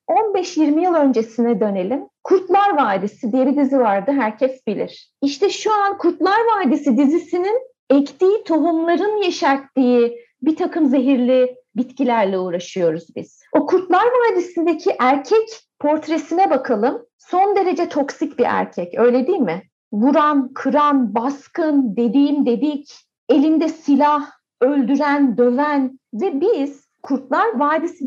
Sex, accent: female, native